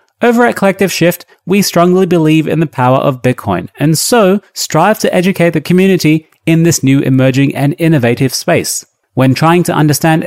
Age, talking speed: 30-49, 175 wpm